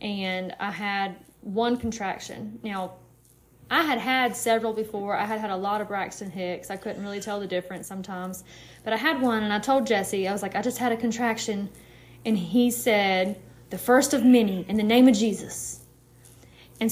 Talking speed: 195 wpm